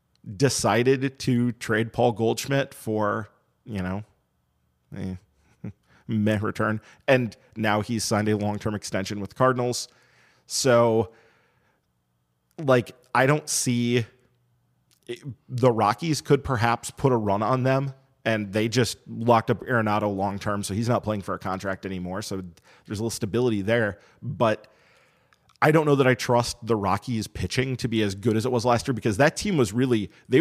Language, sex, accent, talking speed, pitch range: English, male, American, 160 wpm, 105-130 Hz